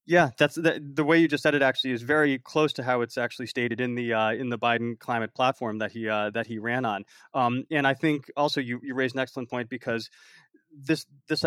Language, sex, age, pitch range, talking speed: English, male, 30-49, 115-140 Hz, 255 wpm